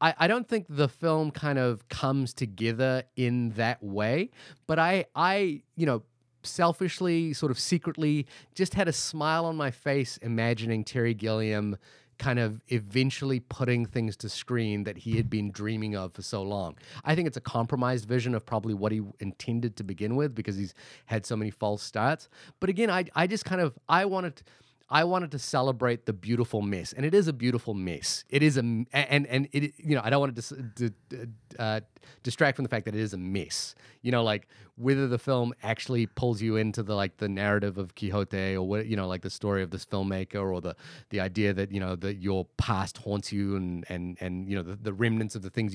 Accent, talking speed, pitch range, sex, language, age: American, 210 wpm, 105-140 Hz, male, English, 30-49